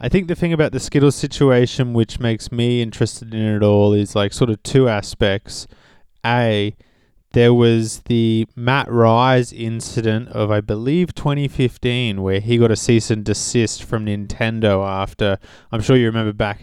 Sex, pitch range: male, 100-120 Hz